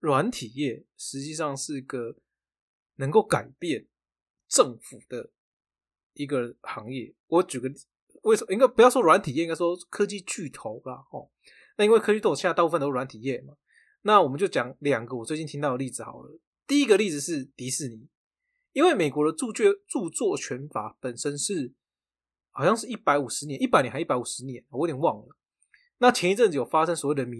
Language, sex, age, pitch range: Chinese, male, 20-39, 130-180 Hz